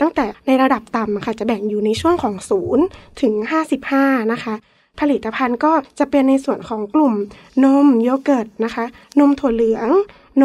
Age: 20-39